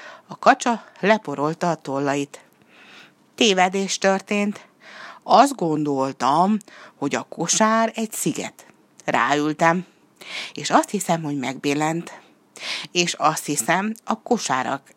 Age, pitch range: 60-79, 145-205 Hz